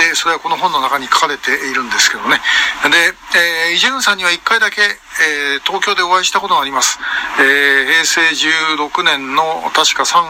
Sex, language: male, Japanese